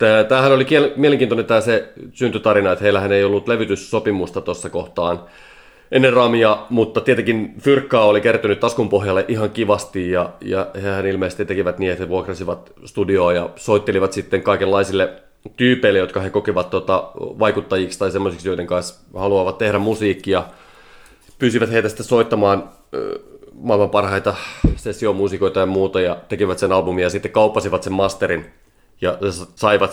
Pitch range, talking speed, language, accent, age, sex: 95-110 Hz, 150 wpm, Finnish, native, 30-49, male